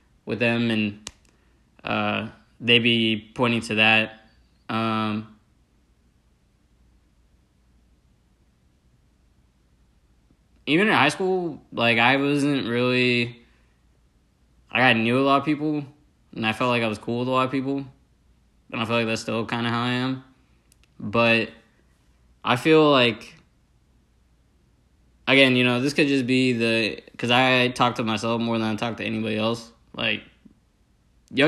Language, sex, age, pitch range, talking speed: English, male, 20-39, 110-130 Hz, 140 wpm